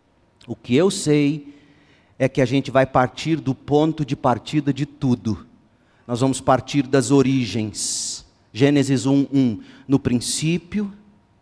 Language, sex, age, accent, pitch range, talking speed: Portuguese, male, 40-59, Brazilian, 130-180 Hz, 130 wpm